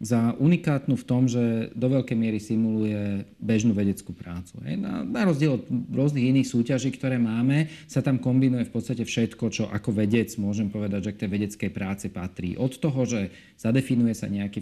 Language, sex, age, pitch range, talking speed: Slovak, male, 40-59, 105-125 Hz, 175 wpm